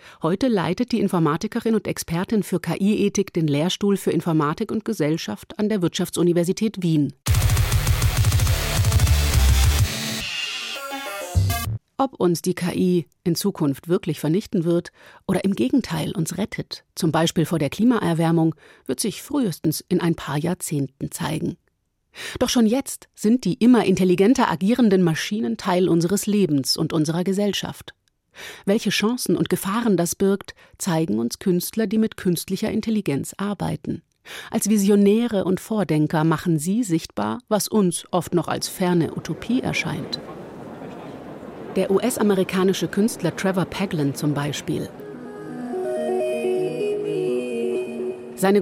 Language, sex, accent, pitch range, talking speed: German, female, German, 155-200 Hz, 120 wpm